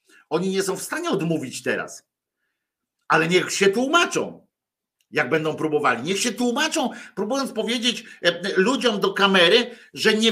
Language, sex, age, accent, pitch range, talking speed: Polish, male, 50-69, native, 160-235 Hz, 140 wpm